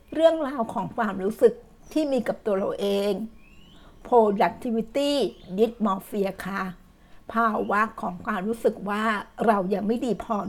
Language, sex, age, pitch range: Thai, female, 60-79, 195-230 Hz